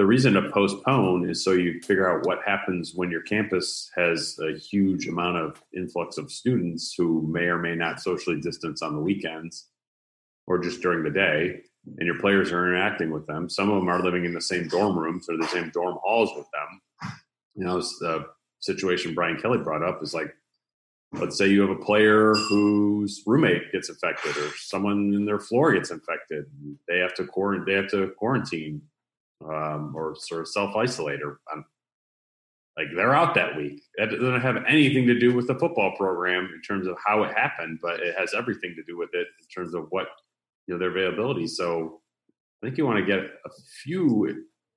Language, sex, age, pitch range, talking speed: English, male, 40-59, 85-105 Hz, 195 wpm